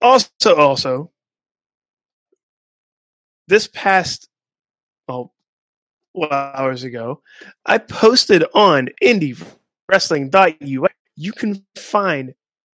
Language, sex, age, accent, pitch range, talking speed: English, male, 20-39, American, 135-185 Hz, 75 wpm